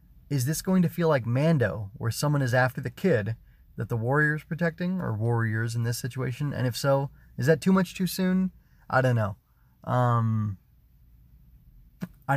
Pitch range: 110-135 Hz